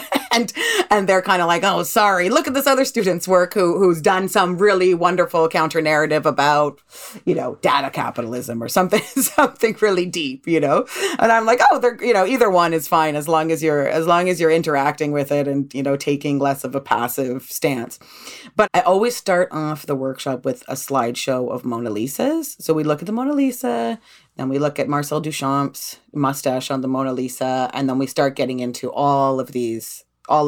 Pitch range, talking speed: 140-225 Hz, 210 wpm